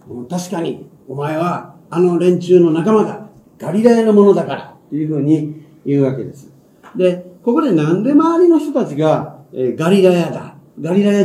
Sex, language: male, Japanese